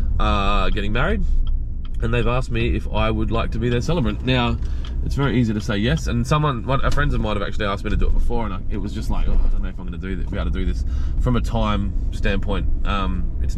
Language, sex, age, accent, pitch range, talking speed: English, male, 20-39, Australian, 80-110 Hz, 280 wpm